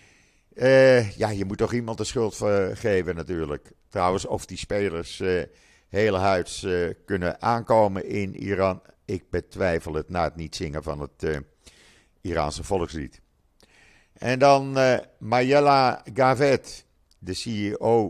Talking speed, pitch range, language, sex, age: 135 wpm, 90-115 Hz, Dutch, male, 50-69